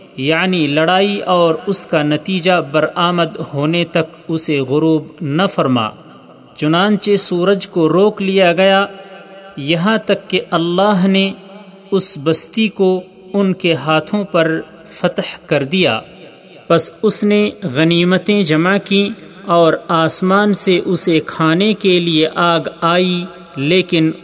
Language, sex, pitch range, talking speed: Urdu, male, 160-195 Hz, 125 wpm